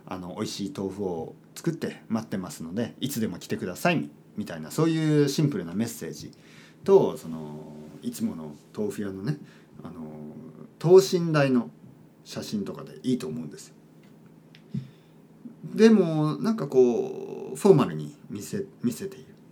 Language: Japanese